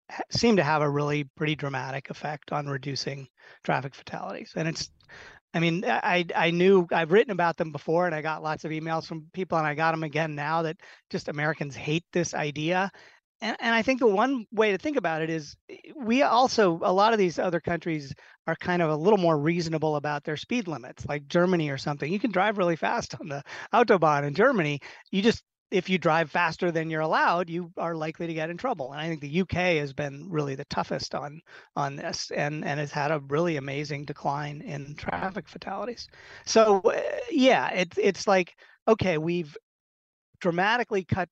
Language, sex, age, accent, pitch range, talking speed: English, male, 30-49, American, 150-185 Hz, 200 wpm